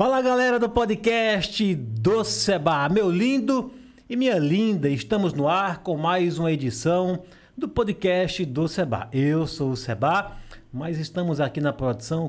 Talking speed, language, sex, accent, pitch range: 150 wpm, Portuguese, male, Brazilian, 130-185 Hz